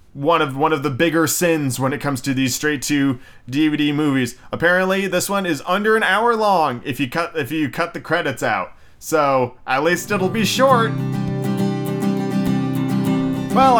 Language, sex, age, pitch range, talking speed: English, male, 30-49, 140-205 Hz, 170 wpm